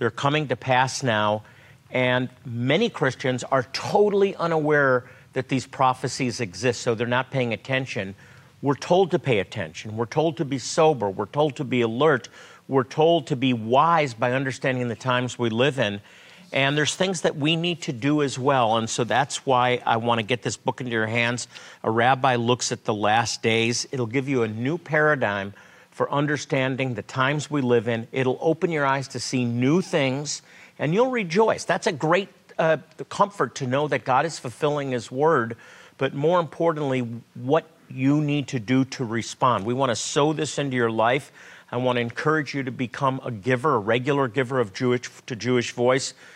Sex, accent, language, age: male, American, English, 50-69